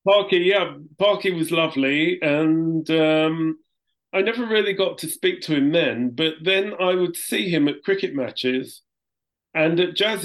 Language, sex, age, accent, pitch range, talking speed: English, male, 40-59, British, 130-165 Hz, 165 wpm